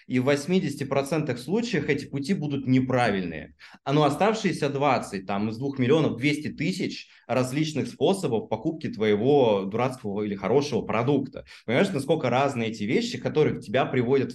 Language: Russian